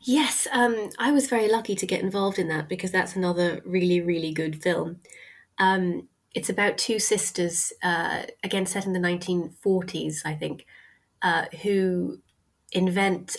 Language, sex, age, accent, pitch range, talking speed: English, female, 20-39, British, 170-195 Hz, 150 wpm